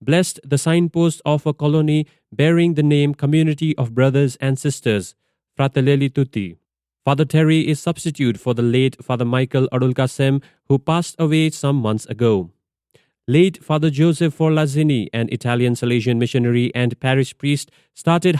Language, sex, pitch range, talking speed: English, male, 125-160 Hz, 145 wpm